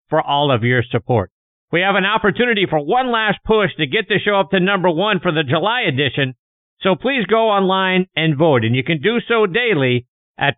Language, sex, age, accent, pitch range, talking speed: English, male, 50-69, American, 125-180 Hz, 215 wpm